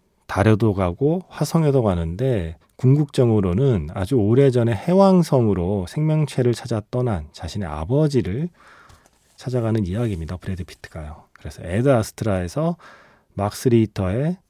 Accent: native